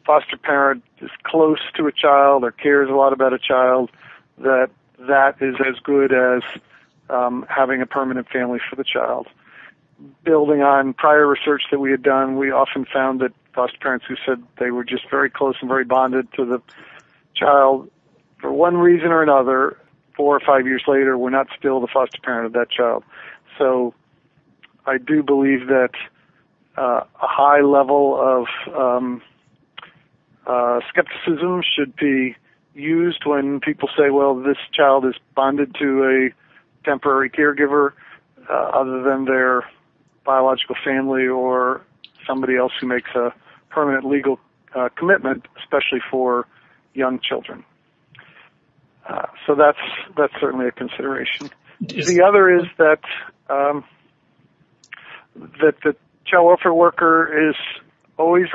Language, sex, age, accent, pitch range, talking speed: English, male, 50-69, American, 130-145 Hz, 145 wpm